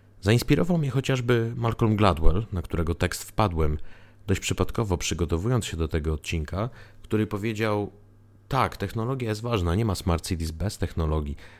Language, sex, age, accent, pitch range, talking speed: Polish, male, 30-49, native, 90-115 Hz, 145 wpm